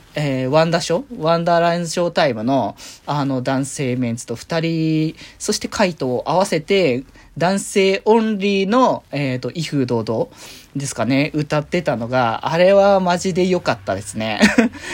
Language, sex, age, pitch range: Japanese, male, 20-39, 140-210 Hz